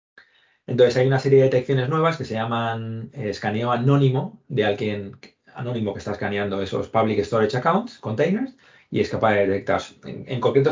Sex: male